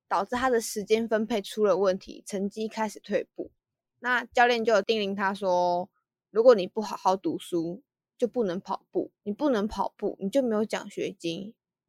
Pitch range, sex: 195-245 Hz, female